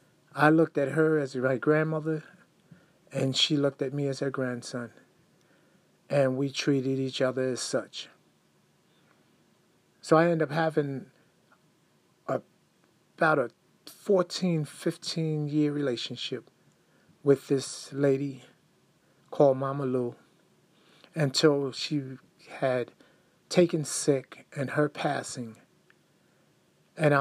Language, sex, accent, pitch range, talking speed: English, male, American, 135-155 Hz, 110 wpm